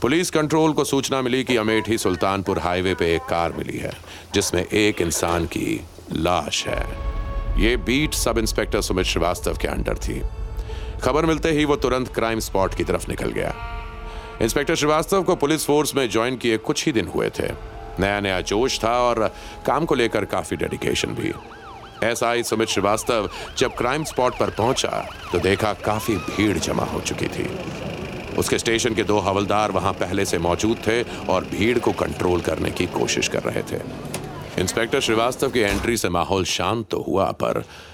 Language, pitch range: Hindi, 90-115 Hz